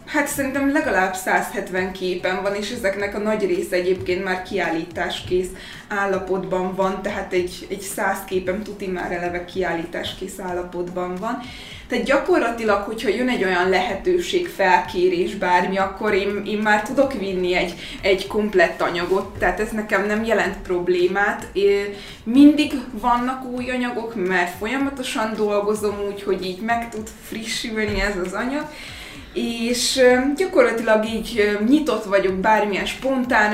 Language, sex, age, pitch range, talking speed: Hungarian, female, 20-39, 190-235 Hz, 135 wpm